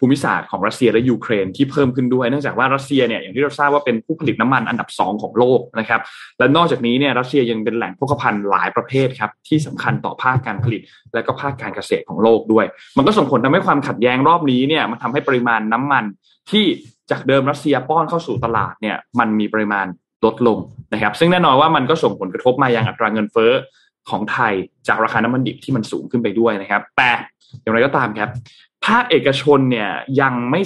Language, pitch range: Thai, 110-145 Hz